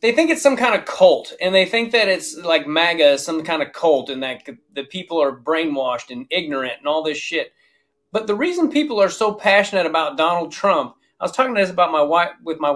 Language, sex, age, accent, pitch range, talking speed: English, male, 30-49, American, 155-205 Hz, 235 wpm